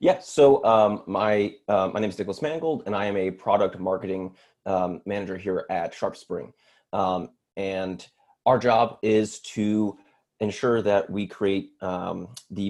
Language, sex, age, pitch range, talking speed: Swedish, male, 30-49, 95-110 Hz, 155 wpm